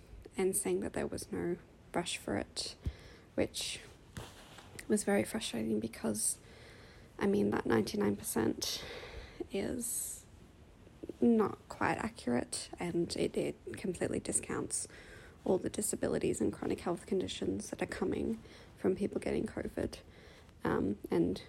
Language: English